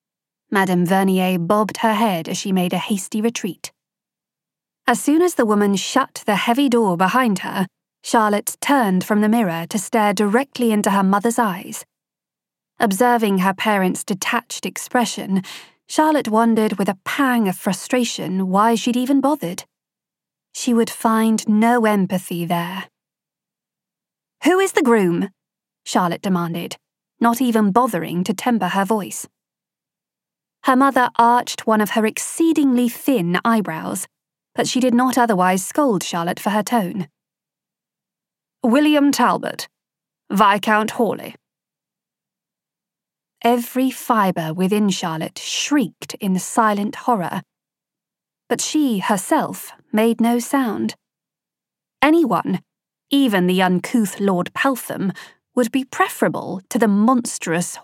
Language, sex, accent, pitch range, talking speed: English, female, British, 190-245 Hz, 120 wpm